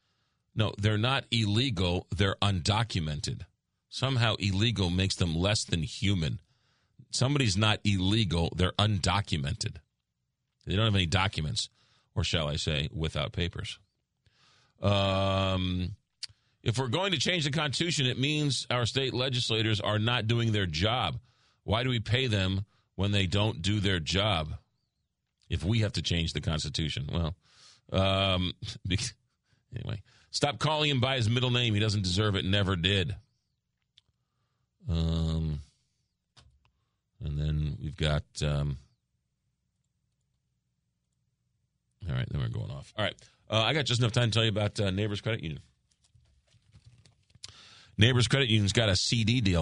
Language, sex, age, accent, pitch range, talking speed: English, male, 40-59, American, 95-120 Hz, 140 wpm